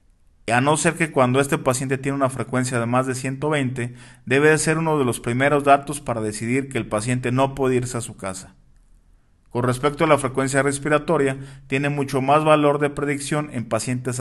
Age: 40-59